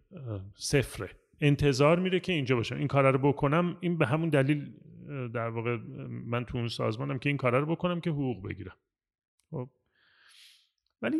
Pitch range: 115-170 Hz